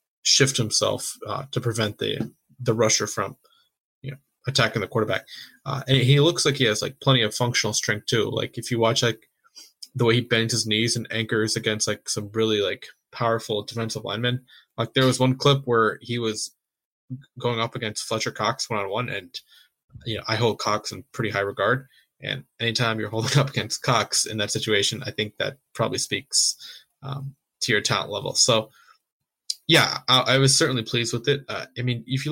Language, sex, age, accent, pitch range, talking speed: English, male, 20-39, American, 110-135 Hz, 195 wpm